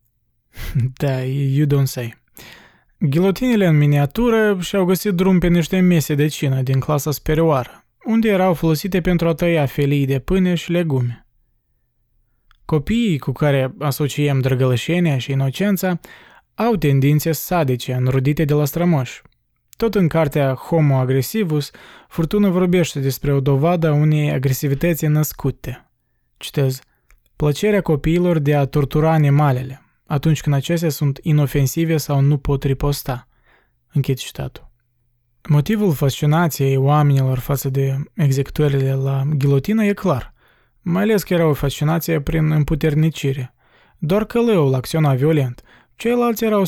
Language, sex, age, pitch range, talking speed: Romanian, male, 20-39, 135-170 Hz, 125 wpm